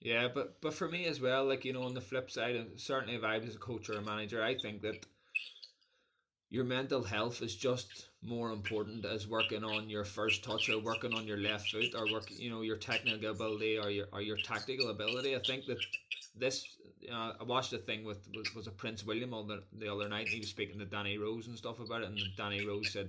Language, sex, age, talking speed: English, male, 20-39, 245 wpm